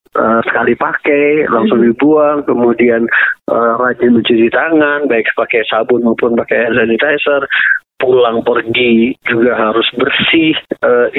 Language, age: Indonesian, 30-49